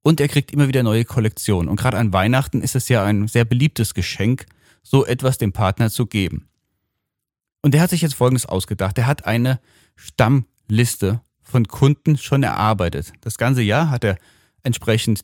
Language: German